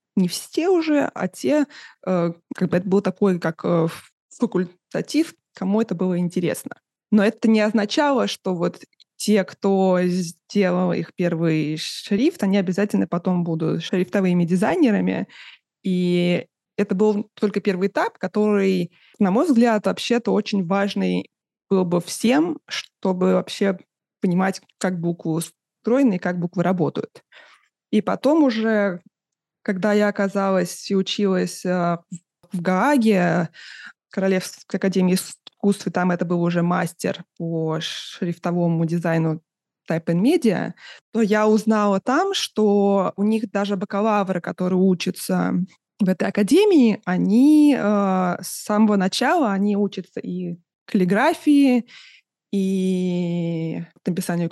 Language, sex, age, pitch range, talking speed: Russian, female, 20-39, 175-215 Hz, 120 wpm